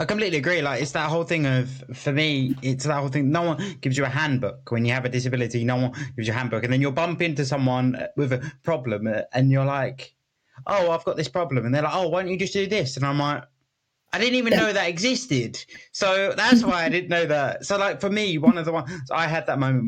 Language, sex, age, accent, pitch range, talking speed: English, male, 20-39, British, 130-165 Hz, 265 wpm